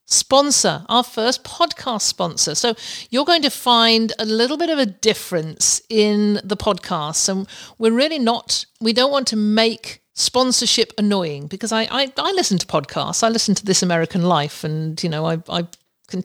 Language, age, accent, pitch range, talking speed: English, 50-69, British, 175-230 Hz, 180 wpm